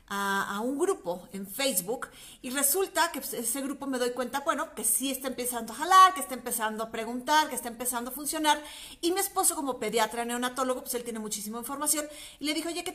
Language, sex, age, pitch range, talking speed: Spanish, female, 40-59, 220-285 Hz, 215 wpm